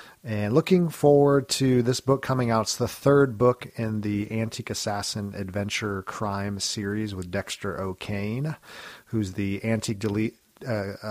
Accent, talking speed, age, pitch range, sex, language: American, 140 wpm, 40-59, 100-125 Hz, male, English